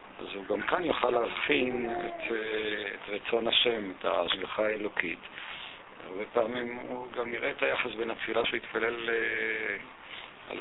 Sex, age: male, 50-69